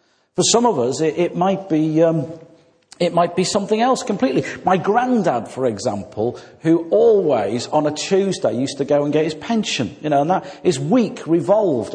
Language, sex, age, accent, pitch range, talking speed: English, male, 40-59, British, 130-180 Hz, 190 wpm